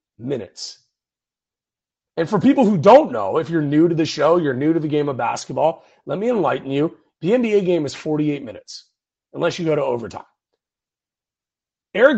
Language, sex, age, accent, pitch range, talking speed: English, male, 40-59, American, 150-215 Hz, 175 wpm